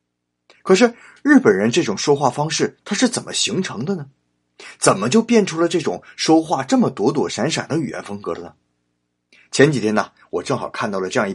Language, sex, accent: Chinese, male, native